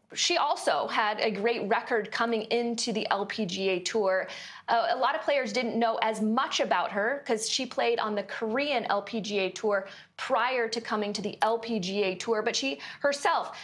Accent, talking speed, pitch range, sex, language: American, 175 wpm, 220-265 Hz, female, English